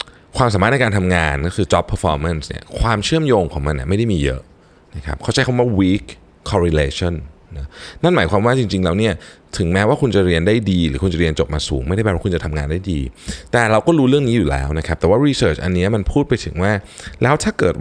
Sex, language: male, Thai